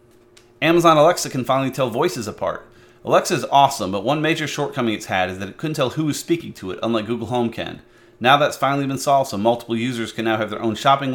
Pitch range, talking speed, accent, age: 110-130 Hz, 235 wpm, American, 30-49